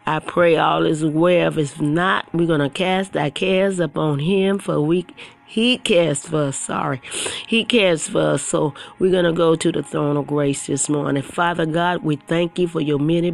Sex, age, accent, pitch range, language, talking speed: female, 40-59, American, 150-185 Hz, English, 210 wpm